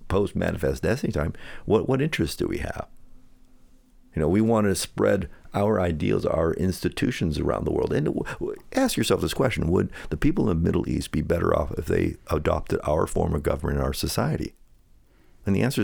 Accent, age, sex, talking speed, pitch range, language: American, 50-69, male, 190 wpm, 75-100 Hz, English